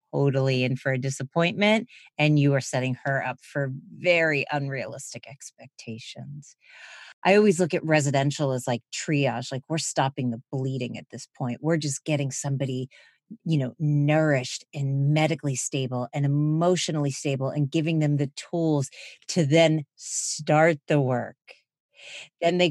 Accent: American